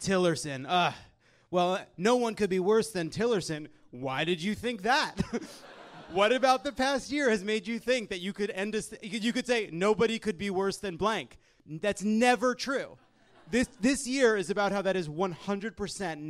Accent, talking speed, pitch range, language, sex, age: American, 190 wpm, 150-210 Hz, English, male, 30-49